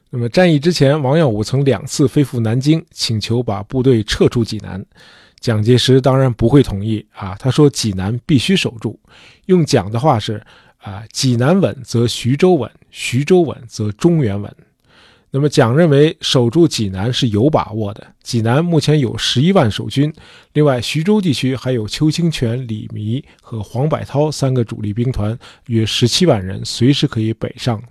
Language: Chinese